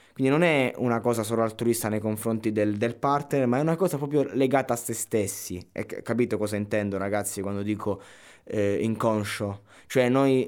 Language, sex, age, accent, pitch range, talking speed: Italian, male, 20-39, native, 105-125 Hz, 180 wpm